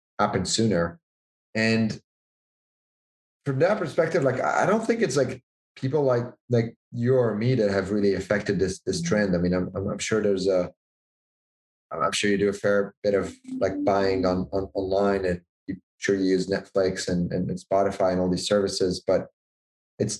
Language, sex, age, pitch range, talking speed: English, male, 30-49, 95-115 Hz, 180 wpm